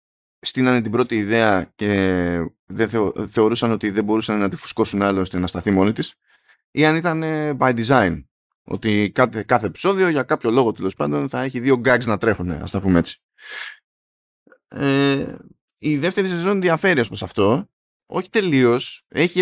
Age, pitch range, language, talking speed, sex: 20-39, 105-150 Hz, Greek, 165 wpm, male